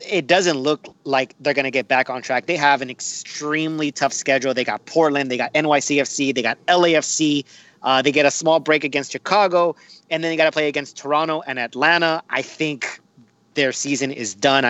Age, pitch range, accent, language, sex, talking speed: 30-49, 120-150 Hz, American, English, male, 205 wpm